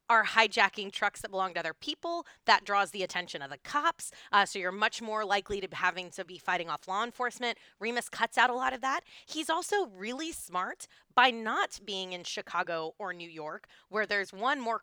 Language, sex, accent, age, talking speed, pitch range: English, female, American, 20-39, 210 wpm, 185-255 Hz